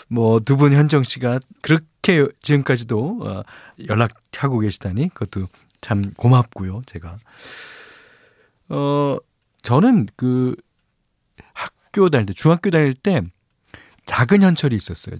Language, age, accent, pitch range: Korean, 40-59, native, 115-170 Hz